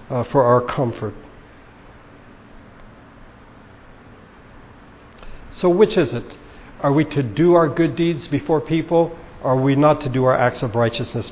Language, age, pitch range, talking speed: English, 60-79, 120-150 Hz, 140 wpm